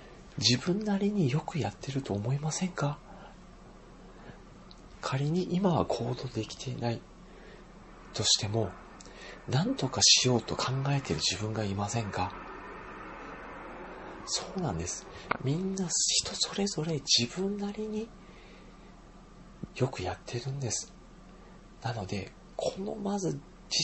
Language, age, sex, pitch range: Japanese, 40-59, male, 110-155 Hz